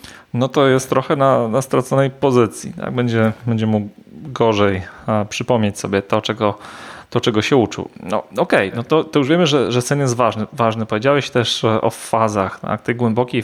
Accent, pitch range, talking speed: native, 110-130 Hz, 190 wpm